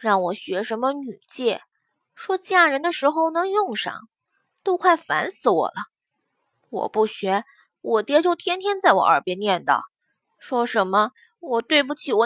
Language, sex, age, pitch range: Chinese, female, 20-39, 220-350 Hz